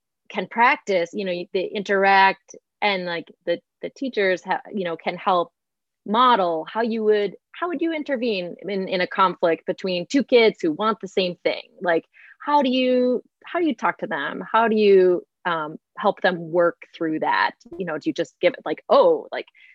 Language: English